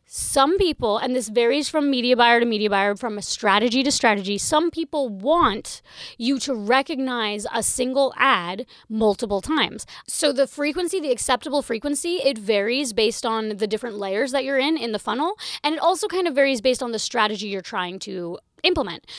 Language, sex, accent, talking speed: English, female, American, 190 wpm